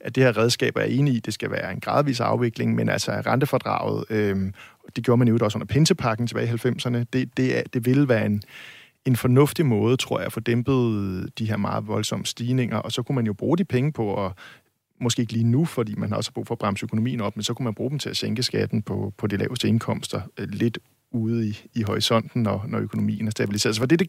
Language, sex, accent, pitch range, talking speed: Danish, male, native, 110-130 Hz, 255 wpm